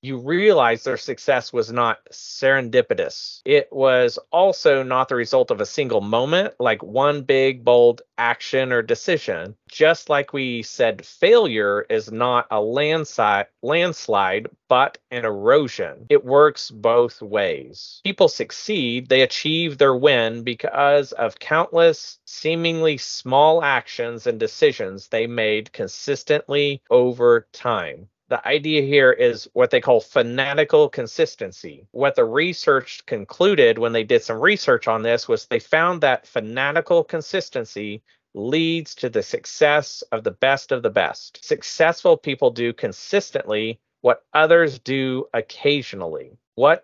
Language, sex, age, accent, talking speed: English, male, 40-59, American, 135 wpm